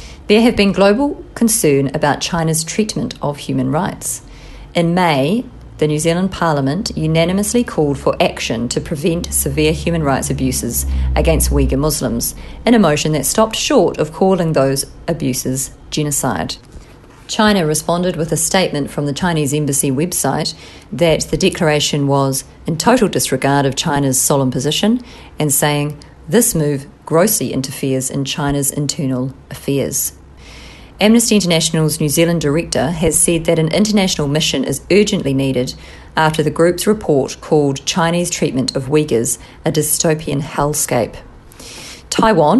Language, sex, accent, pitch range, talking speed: English, female, Australian, 135-170 Hz, 140 wpm